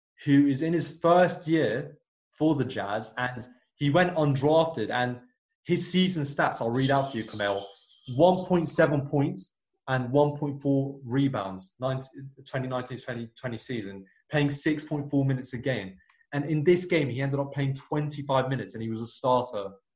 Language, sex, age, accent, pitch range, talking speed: English, male, 20-39, British, 125-145 Hz, 160 wpm